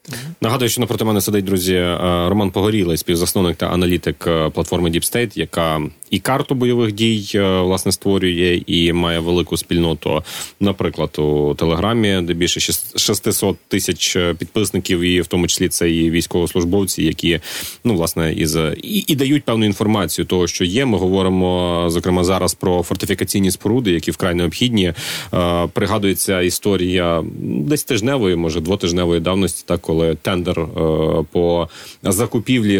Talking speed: 130 wpm